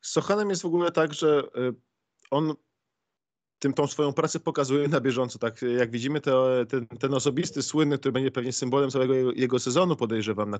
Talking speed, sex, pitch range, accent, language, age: 180 wpm, male, 125-140 Hz, native, Polish, 20-39